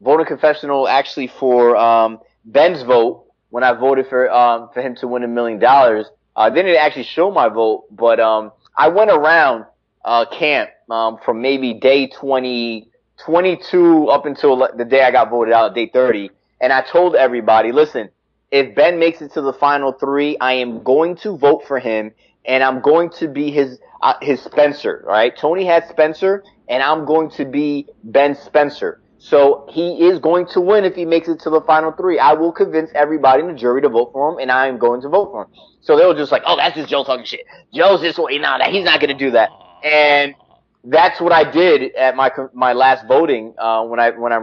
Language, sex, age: English, male, 30-49